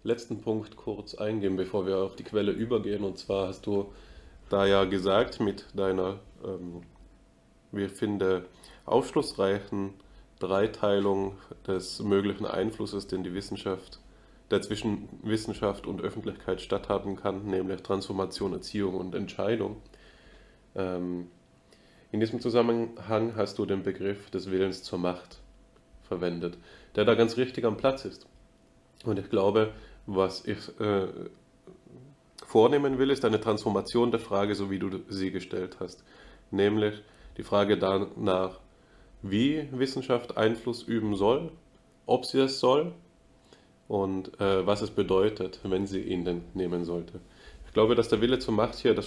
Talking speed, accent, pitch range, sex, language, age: 140 wpm, German, 95-105 Hz, male, German, 20-39